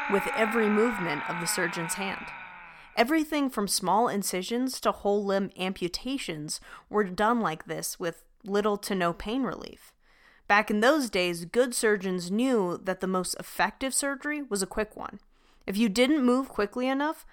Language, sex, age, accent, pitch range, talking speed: English, female, 30-49, American, 190-240 Hz, 165 wpm